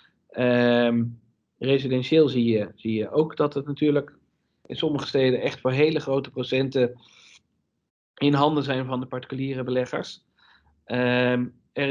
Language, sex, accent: Dutch, male, Dutch